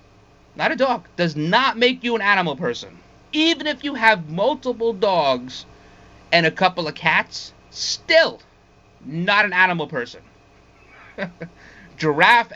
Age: 30-49